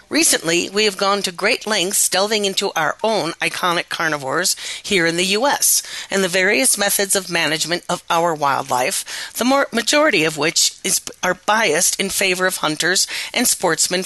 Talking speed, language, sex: 160 wpm, English, female